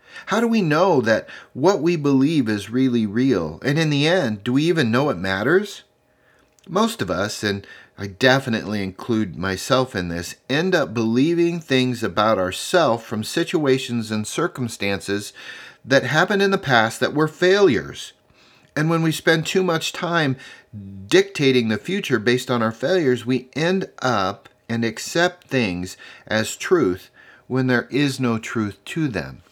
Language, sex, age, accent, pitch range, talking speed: English, male, 40-59, American, 115-165 Hz, 160 wpm